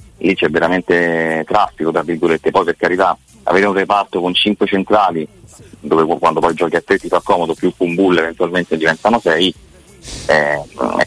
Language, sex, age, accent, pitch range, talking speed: Italian, male, 30-49, native, 80-95 Hz, 175 wpm